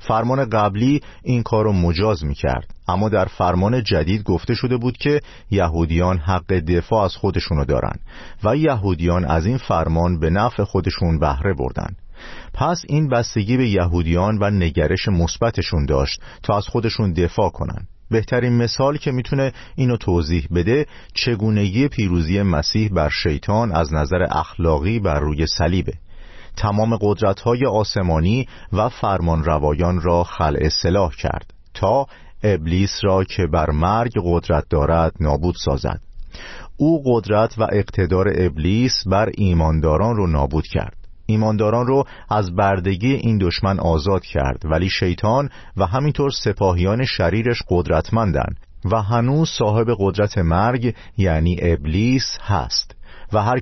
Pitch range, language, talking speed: 85-115 Hz, Persian, 130 wpm